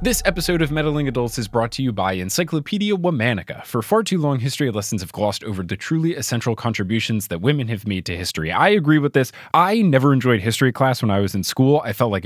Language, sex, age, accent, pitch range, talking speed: English, male, 20-39, American, 115-185 Hz, 235 wpm